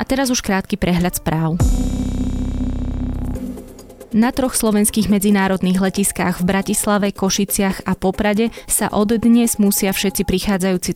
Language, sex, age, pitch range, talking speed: Slovak, female, 20-39, 170-200 Hz, 120 wpm